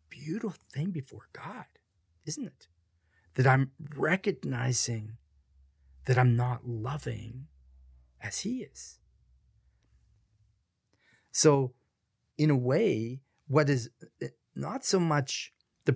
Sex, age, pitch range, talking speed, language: male, 40-59, 110-140 Hz, 100 wpm, English